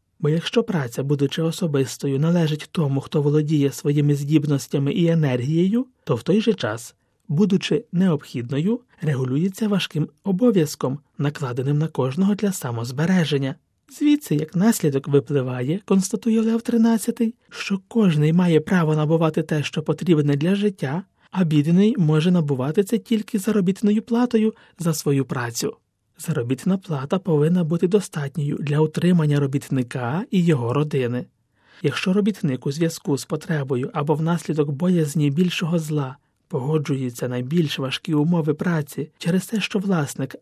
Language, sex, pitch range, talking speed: Ukrainian, male, 145-190 Hz, 130 wpm